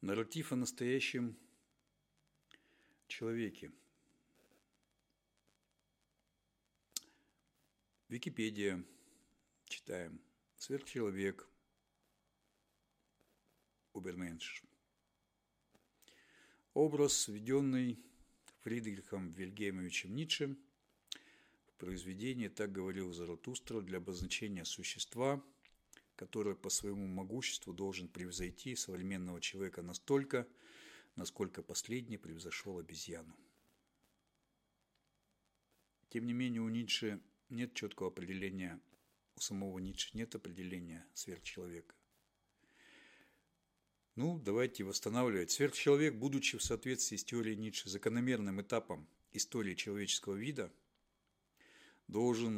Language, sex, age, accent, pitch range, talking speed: Russian, male, 50-69, native, 95-120 Hz, 75 wpm